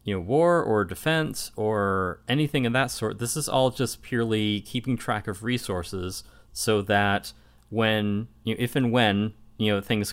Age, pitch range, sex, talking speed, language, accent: 30-49, 95-110 Hz, male, 180 wpm, English, American